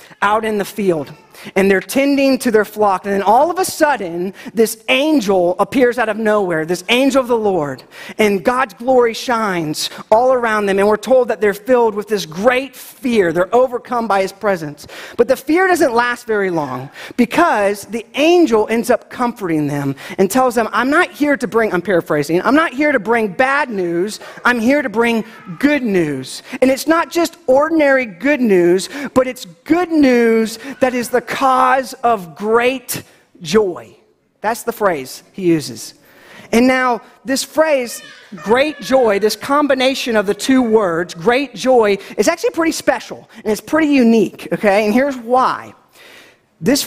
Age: 40-59